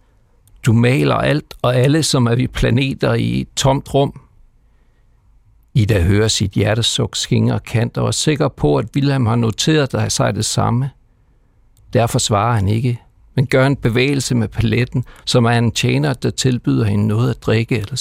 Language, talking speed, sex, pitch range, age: Danish, 180 wpm, male, 110-135 Hz, 60-79